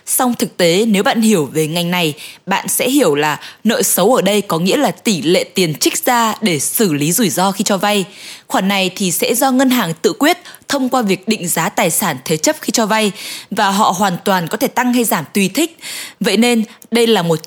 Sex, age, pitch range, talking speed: female, 20-39, 180-240 Hz, 240 wpm